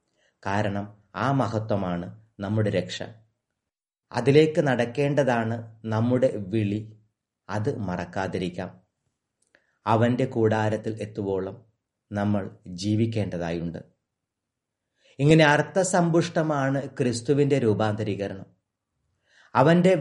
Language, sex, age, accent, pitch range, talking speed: Malayalam, male, 30-49, native, 100-135 Hz, 65 wpm